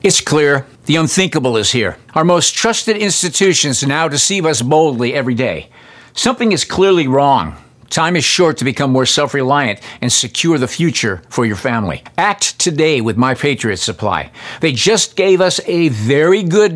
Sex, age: male, 50-69